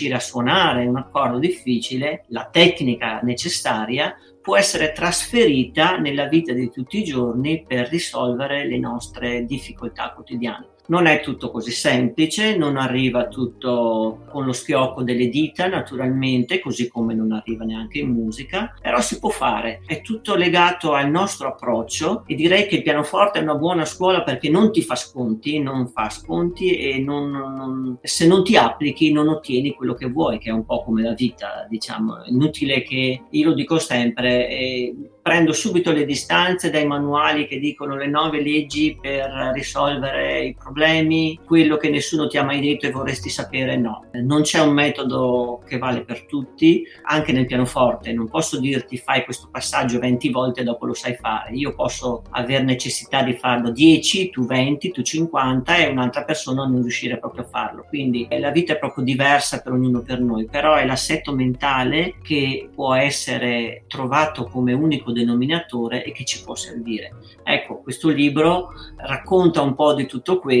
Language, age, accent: Italian, 50-69, native